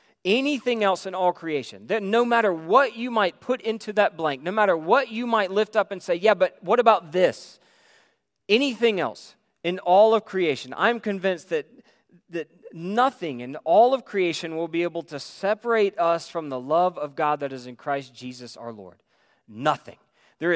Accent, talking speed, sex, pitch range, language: American, 185 wpm, male, 150-220 Hz, English